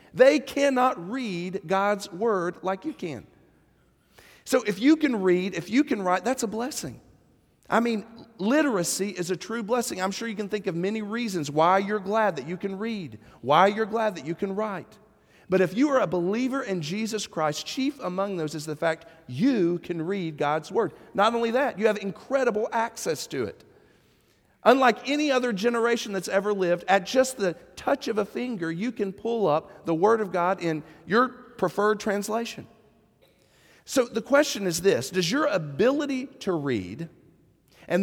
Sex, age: male, 40-59